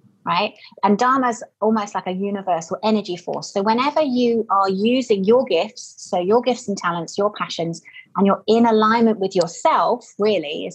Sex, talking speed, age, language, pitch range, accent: female, 180 wpm, 30-49, English, 180-235 Hz, British